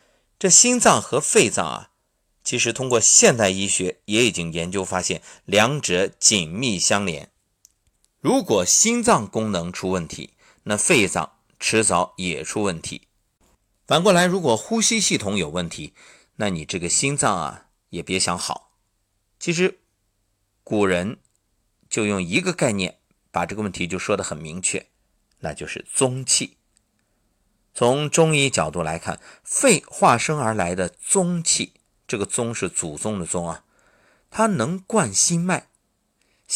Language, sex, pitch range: Chinese, male, 95-150 Hz